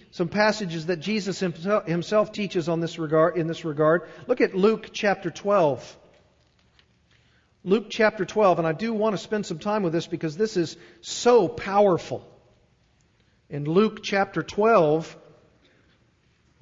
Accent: American